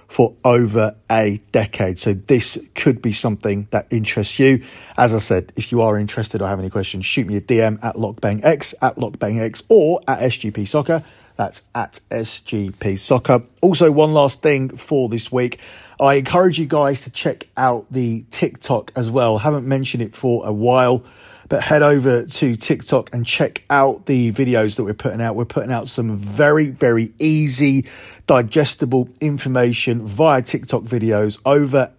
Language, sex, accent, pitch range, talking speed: English, male, British, 110-140 Hz, 170 wpm